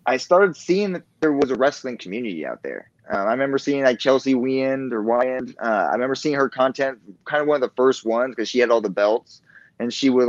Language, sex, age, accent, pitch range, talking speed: English, male, 20-39, American, 110-140 Hz, 245 wpm